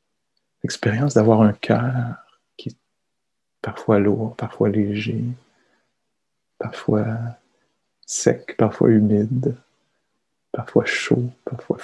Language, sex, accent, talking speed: English, male, French, 85 wpm